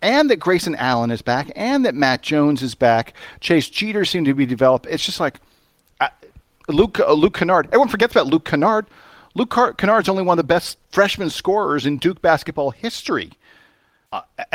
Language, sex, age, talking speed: English, male, 40-59, 185 wpm